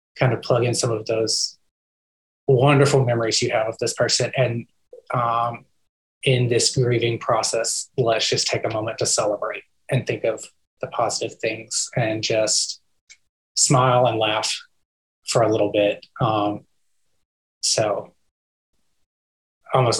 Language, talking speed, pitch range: English, 135 wpm, 110-130 Hz